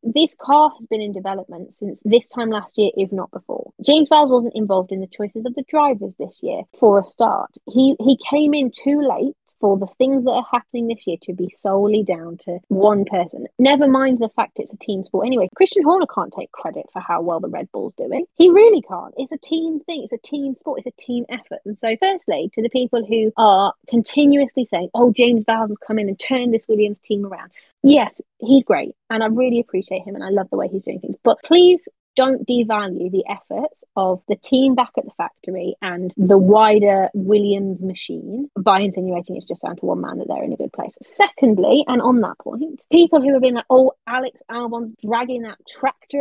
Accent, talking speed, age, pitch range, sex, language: British, 225 wpm, 20-39, 210-275 Hz, female, English